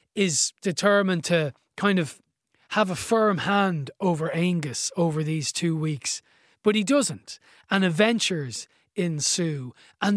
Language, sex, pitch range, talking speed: English, male, 155-205 Hz, 130 wpm